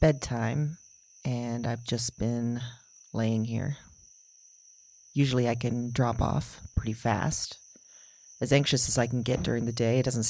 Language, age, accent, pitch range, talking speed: English, 40-59, American, 115-135 Hz, 145 wpm